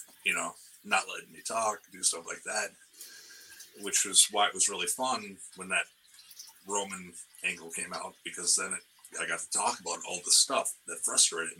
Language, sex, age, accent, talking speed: English, male, 30-49, American, 185 wpm